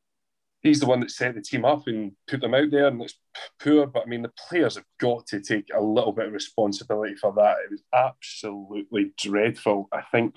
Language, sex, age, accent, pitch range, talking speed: English, male, 20-39, British, 105-125 Hz, 220 wpm